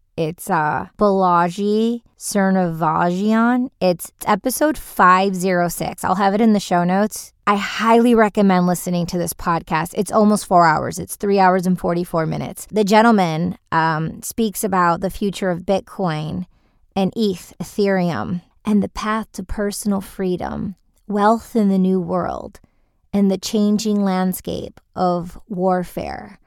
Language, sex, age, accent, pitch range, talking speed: English, female, 20-39, American, 180-210 Hz, 140 wpm